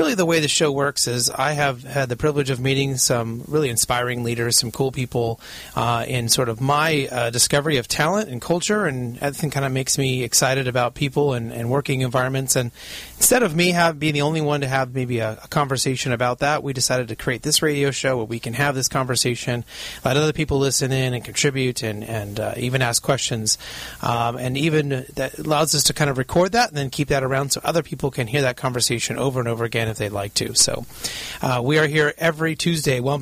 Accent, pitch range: American, 120-145 Hz